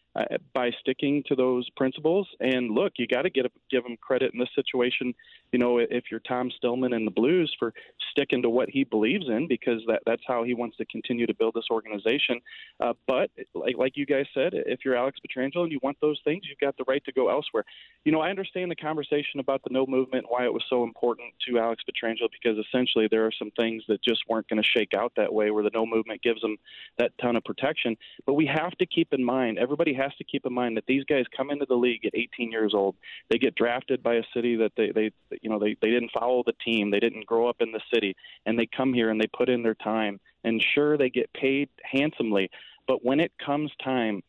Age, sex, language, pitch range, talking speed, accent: 30-49, male, English, 115-135 Hz, 245 wpm, American